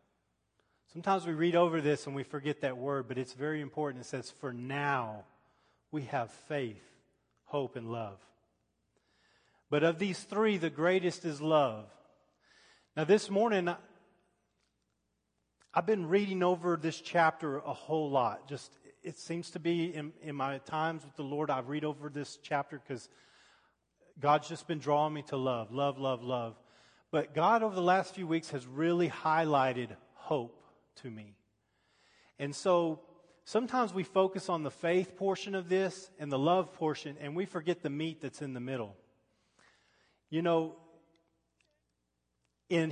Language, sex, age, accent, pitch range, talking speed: English, male, 40-59, American, 140-180 Hz, 155 wpm